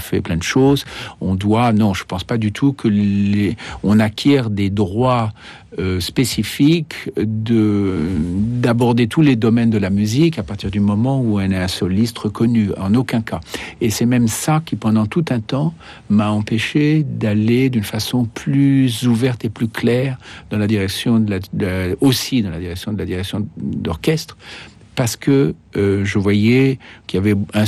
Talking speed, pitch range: 180 wpm, 100-120 Hz